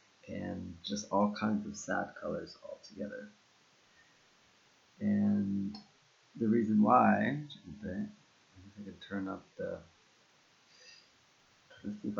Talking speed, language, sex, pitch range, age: 100 wpm, English, male, 105-140 Hz, 30-49